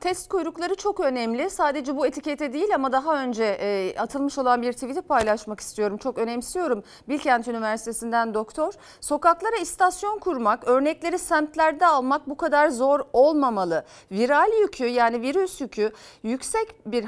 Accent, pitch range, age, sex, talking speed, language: native, 230-310 Hz, 40-59, female, 135 wpm, Turkish